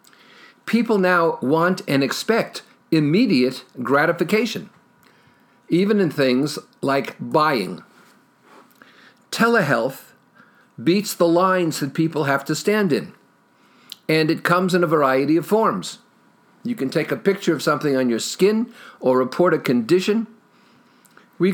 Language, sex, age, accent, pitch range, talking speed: English, male, 50-69, American, 140-195 Hz, 125 wpm